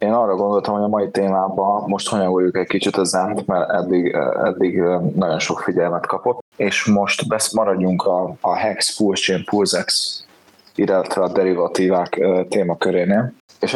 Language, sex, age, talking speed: Hungarian, male, 20-39, 140 wpm